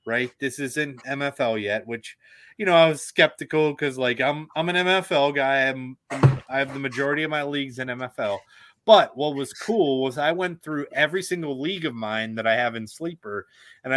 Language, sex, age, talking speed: English, male, 30-49, 200 wpm